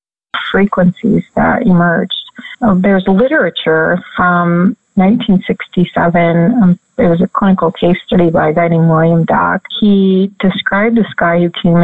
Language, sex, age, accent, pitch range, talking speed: English, female, 40-59, American, 170-200 Hz, 130 wpm